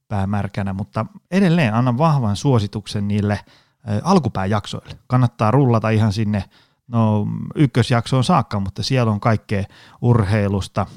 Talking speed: 110 wpm